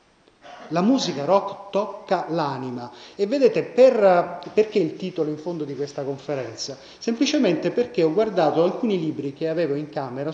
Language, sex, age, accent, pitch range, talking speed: Italian, male, 30-49, native, 140-190 Hz, 150 wpm